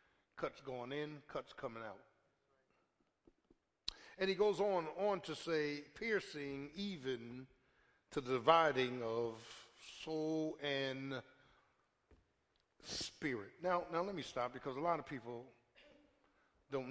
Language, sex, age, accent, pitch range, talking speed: English, male, 60-79, American, 120-155 Hz, 115 wpm